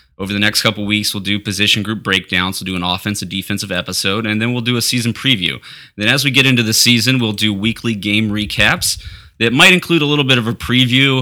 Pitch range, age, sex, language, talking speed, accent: 95-115 Hz, 20-39, male, English, 230 wpm, American